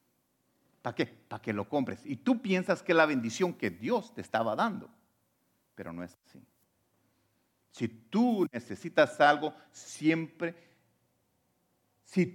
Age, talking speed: 50-69, 135 wpm